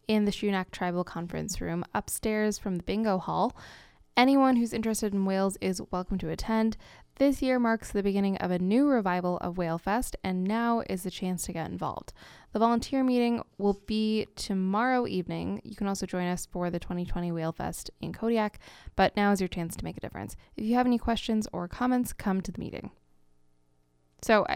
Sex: female